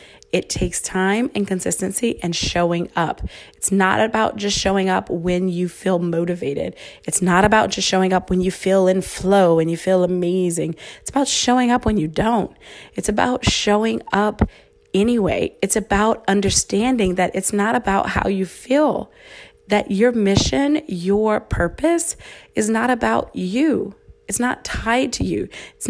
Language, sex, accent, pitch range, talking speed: English, female, American, 175-220 Hz, 160 wpm